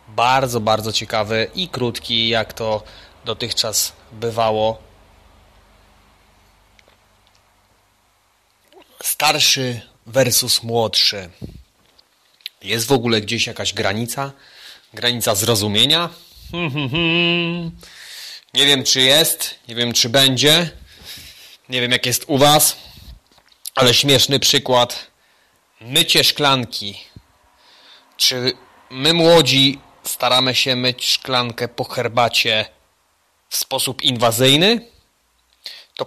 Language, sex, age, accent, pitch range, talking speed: Polish, male, 30-49, native, 110-135 Hz, 85 wpm